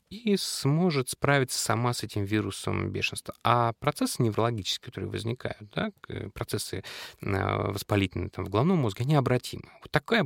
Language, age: Russian, 30-49